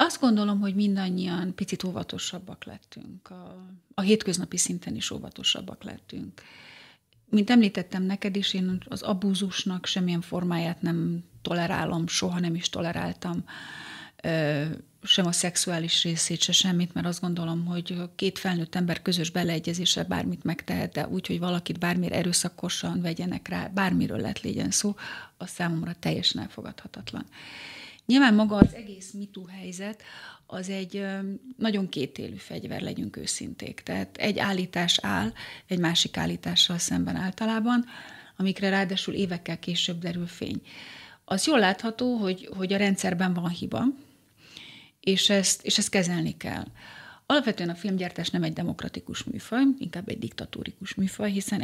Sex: female